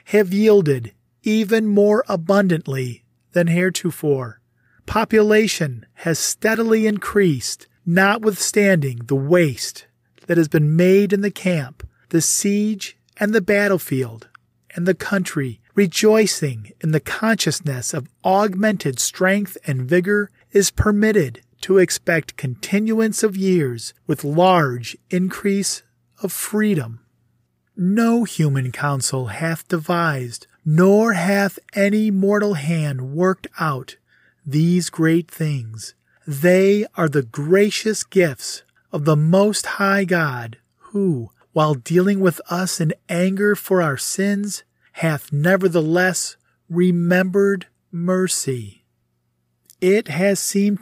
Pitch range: 145-200 Hz